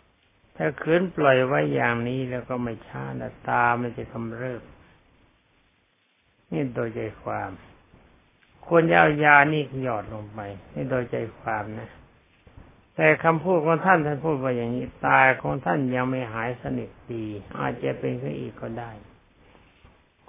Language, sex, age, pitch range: Thai, male, 60-79, 105-140 Hz